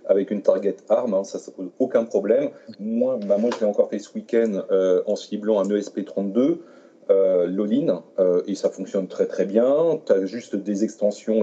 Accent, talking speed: French, 195 wpm